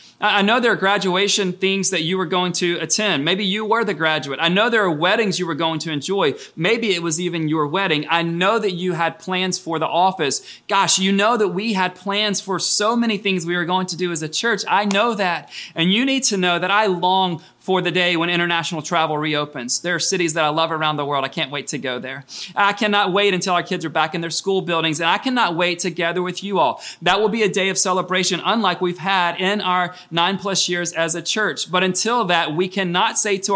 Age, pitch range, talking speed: 30-49, 165-205 Hz, 250 wpm